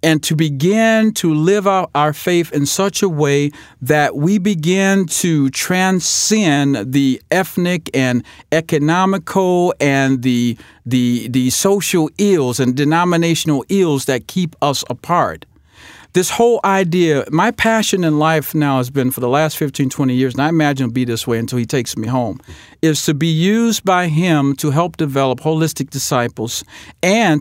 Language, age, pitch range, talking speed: English, 50-69, 135-175 Hz, 165 wpm